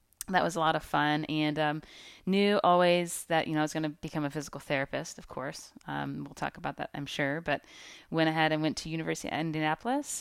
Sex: female